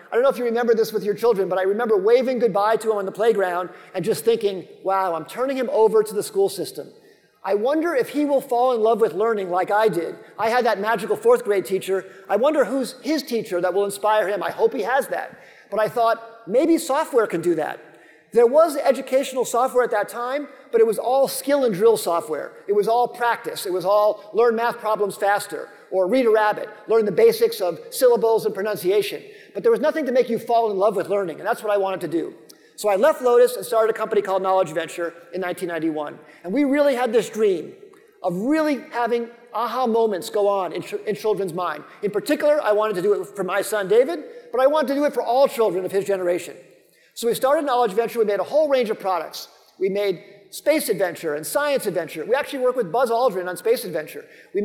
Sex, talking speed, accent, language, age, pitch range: male, 235 wpm, American, English, 50-69, 200-290 Hz